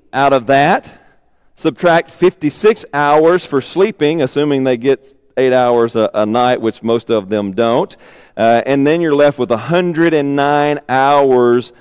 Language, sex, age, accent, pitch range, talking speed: English, male, 40-59, American, 115-160 Hz, 145 wpm